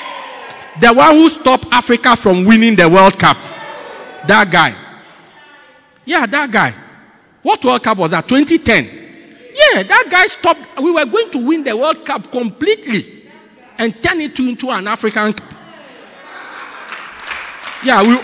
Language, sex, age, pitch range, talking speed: English, male, 50-69, 260-390 Hz, 140 wpm